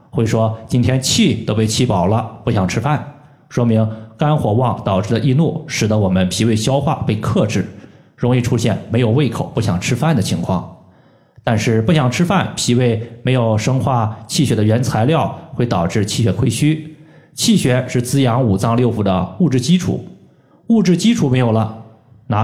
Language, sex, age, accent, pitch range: Chinese, male, 20-39, native, 110-135 Hz